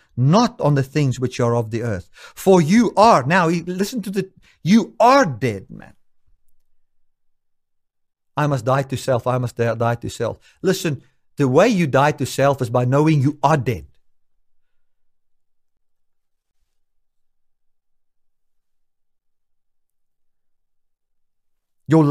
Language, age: English, 50-69